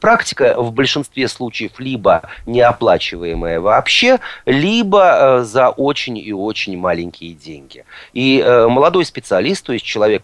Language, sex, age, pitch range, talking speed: Russian, male, 30-49, 100-135 Hz, 115 wpm